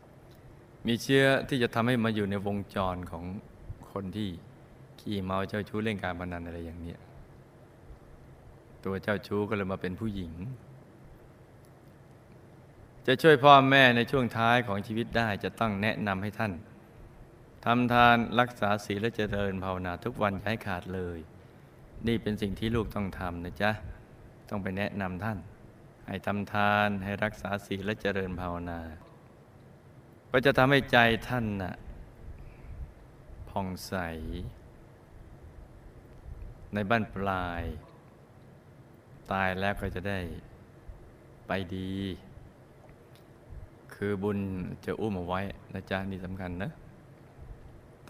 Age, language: 20-39, Thai